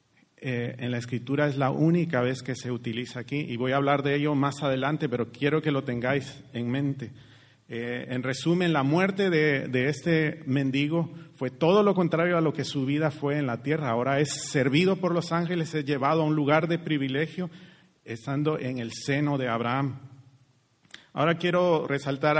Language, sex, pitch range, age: Spanish, male, 130-165 Hz, 40-59